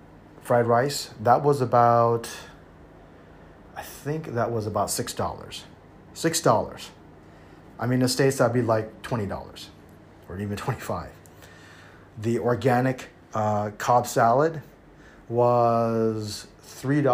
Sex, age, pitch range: male, 30-49, 95-125 Hz